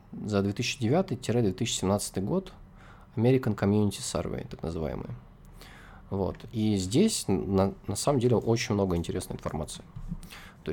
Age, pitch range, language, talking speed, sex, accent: 20-39, 95-120 Hz, Russian, 115 wpm, male, native